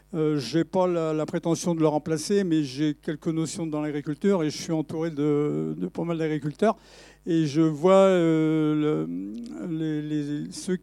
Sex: male